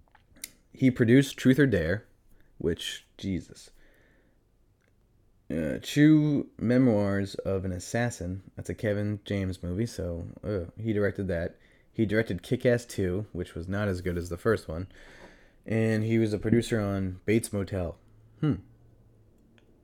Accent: American